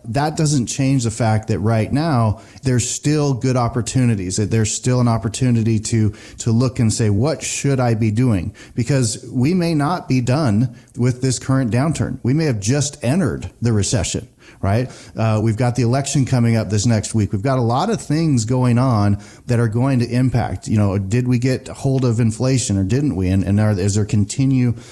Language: English